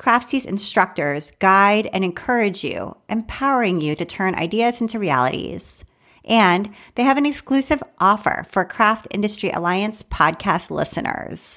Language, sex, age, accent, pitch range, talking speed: English, female, 40-59, American, 175-230 Hz, 130 wpm